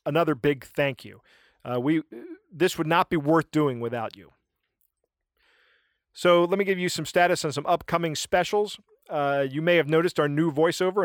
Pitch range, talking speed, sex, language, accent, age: 135-165 Hz, 180 wpm, male, English, American, 40-59